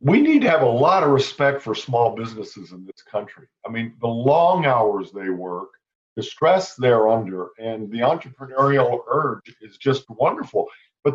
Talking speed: 180 wpm